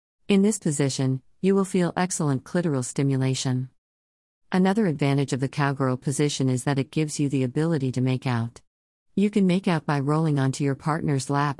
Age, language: 50-69, English